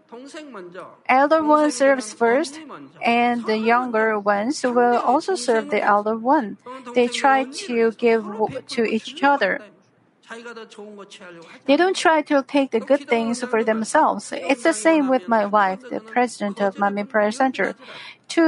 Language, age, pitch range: Korean, 50-69, 220-285 Hz